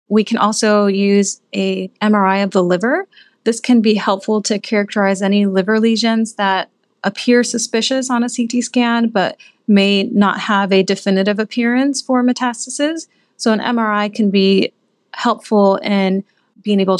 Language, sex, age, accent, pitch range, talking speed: English, female, 30-49, American, 200-240 Hz, 150 wpm